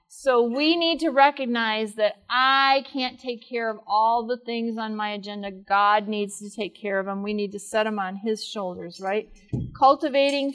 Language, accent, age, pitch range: English, American, 40-59, 210-255 Hz